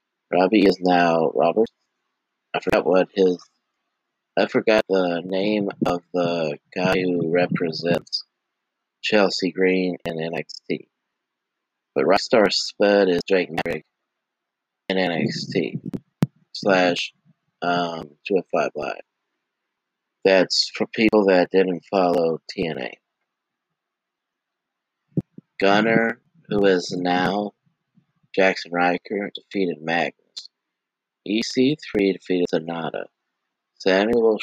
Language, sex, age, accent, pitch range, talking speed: English, male, 30-49, American, 85-105 Hz, 90 wpm